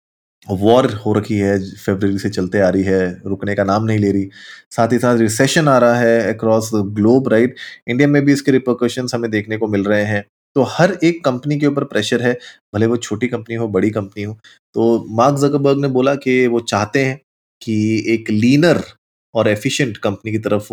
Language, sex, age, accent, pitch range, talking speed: Hindi, male, 20-39, native, 100-125 Hz, 205 wpm